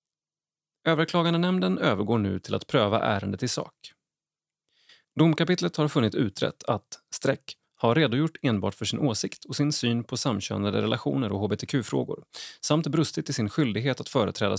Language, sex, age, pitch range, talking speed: Swedish, male, 30-49, 110-155 Hz, 150 wpm